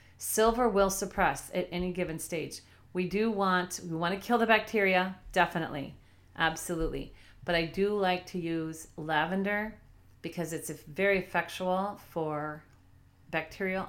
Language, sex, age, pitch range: English, female, 40-59, 160-190 Hz